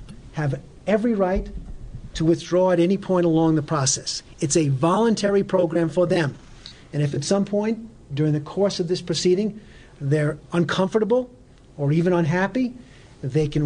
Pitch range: 145-190 Hz